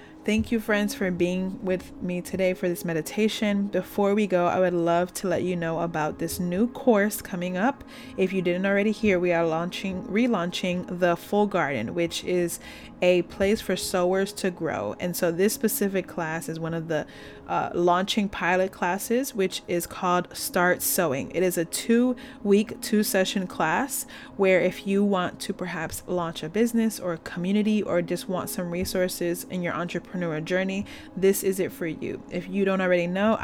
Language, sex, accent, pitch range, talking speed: English, female, American, 175-210 Hz, 185 wpm